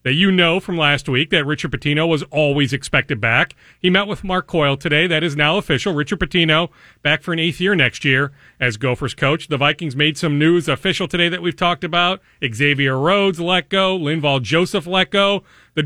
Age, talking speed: 40-59, 205 wpm